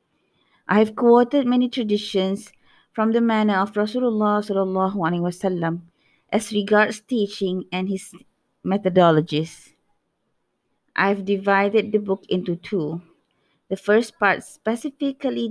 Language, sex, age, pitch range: English, female, 20-39, 185-230 Hz